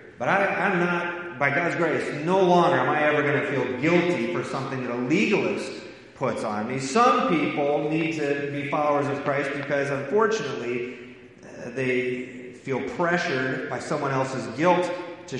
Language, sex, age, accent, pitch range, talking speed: English, male, 30-49, American, 125-175 Hz, 165 wpm